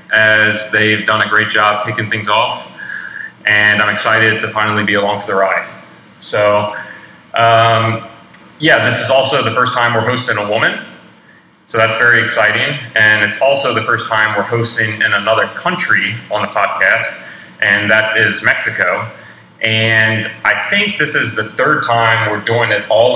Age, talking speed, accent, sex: 30-49, 170 wpm, American, male